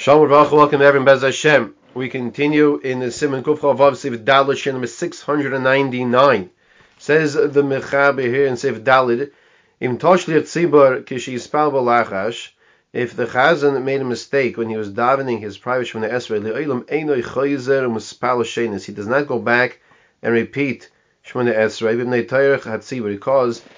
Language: English